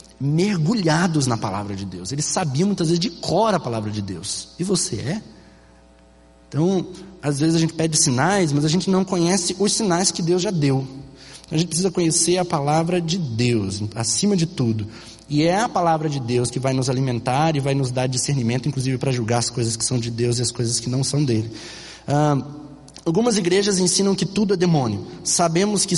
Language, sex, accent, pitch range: Portuguese, male, Brazilian, 120-175 Hz